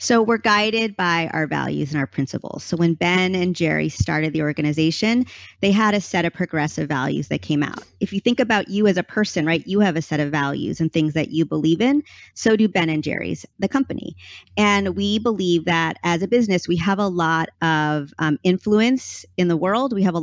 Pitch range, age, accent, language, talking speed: 155-200 Hz, 30-49, American, English, 225 wpm